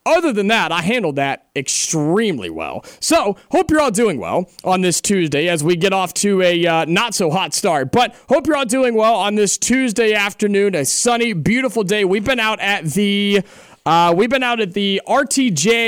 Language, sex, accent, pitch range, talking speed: English, male, American, 165-225 Hz, 205 wpm